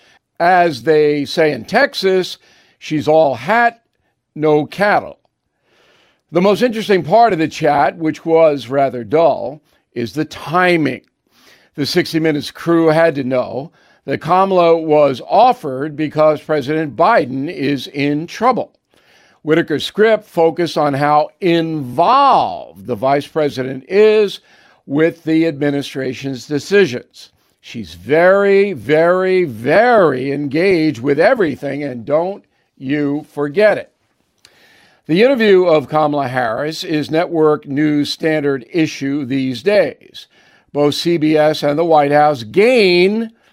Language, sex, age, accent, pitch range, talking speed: English, male, 50-69, American, 145-180 Hz, 120 wpm